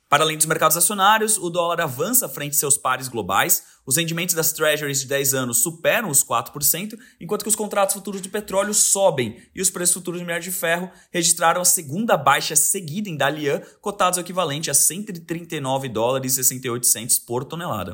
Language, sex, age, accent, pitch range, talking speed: Portuguese, male, 20-39, Brazilian, 130-180 Hz, 190 wpm